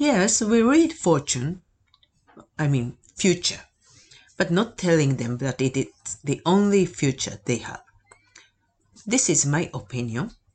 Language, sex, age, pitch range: Japanese, female, 50-69, 130-180 Hz